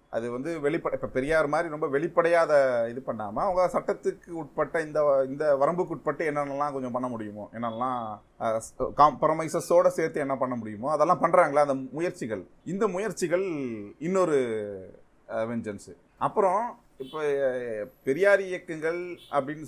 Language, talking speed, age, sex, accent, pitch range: Tamil, 80 wpm, 30-49, male, native, 130-165 Hz